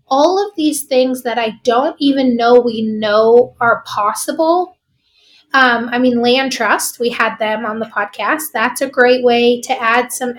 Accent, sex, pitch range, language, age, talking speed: American, female, 220-270 Hz, English, 20-39, 180 wpm